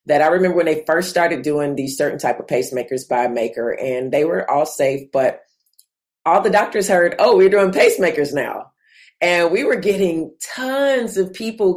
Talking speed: 190 wpm